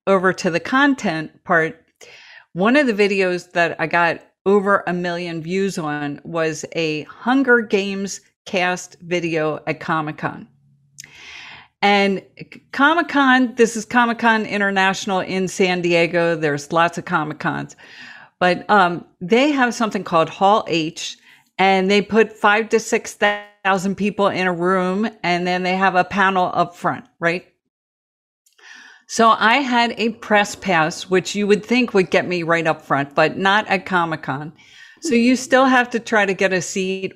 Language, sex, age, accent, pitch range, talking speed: English, female, 50-69, American, 170-220 Hz, 155 wpm